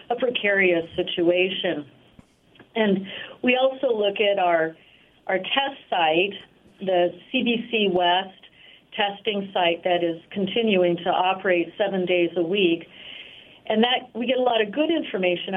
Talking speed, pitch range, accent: 135 wpm, 180-215 Hz, American